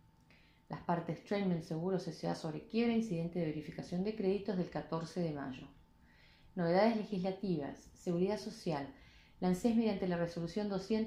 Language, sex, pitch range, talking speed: Spanish, female, 165-205 Hz, 130 wpm